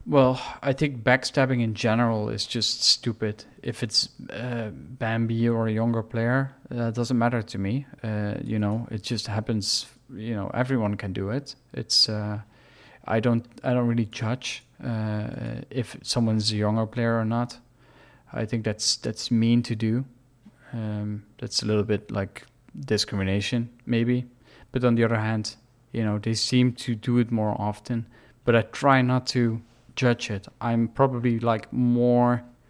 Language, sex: English, male